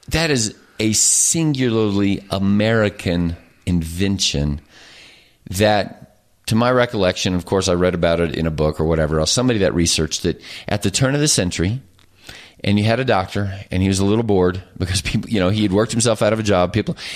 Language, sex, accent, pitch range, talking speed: English, male, American, 95-120 Hz, 195 wpm